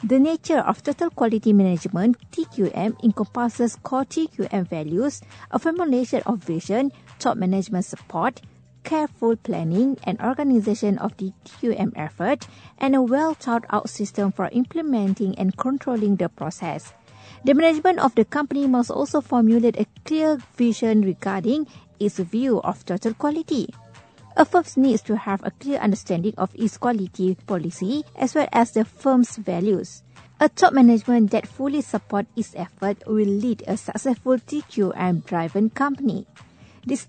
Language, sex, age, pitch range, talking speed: English, female, 50-69, 195-260 Hz, 140 wpm